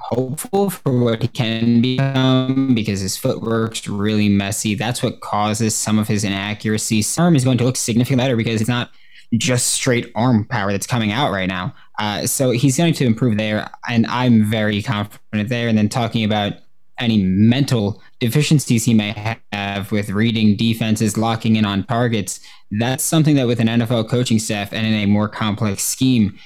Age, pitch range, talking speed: 20-39, 100-120 Hz, 185 wpm